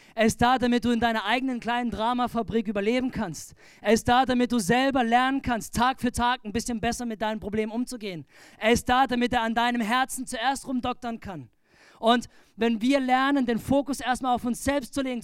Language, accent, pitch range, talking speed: German, German, 225-260 Hz, 210 wpm